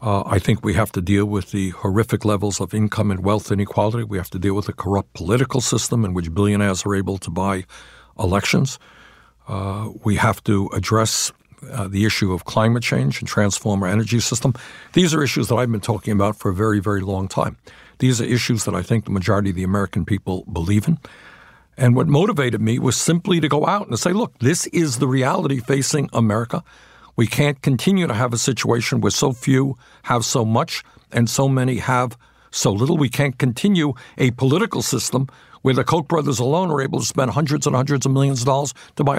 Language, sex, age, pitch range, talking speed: English, male, 60-79, 105-150 Hz, 210 wpm